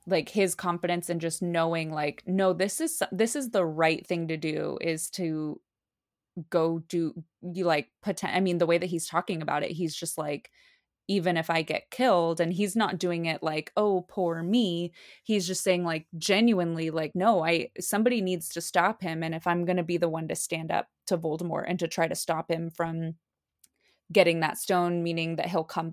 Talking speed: 205 wpm